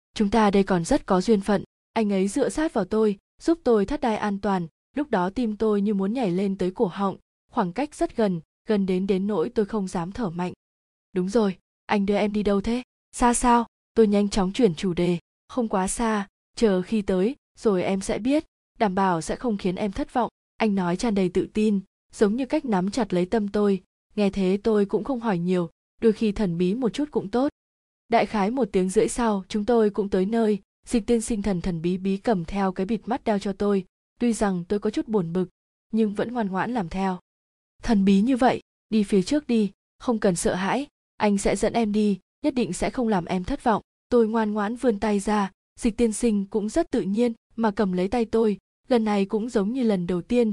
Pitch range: 195-230 Hz